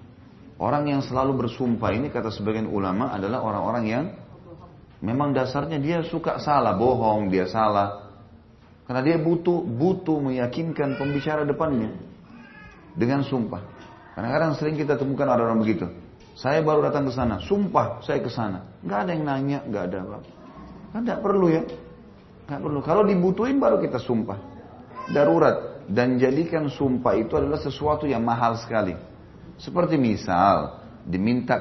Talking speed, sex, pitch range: 140 wpm, male, 100-140 Hz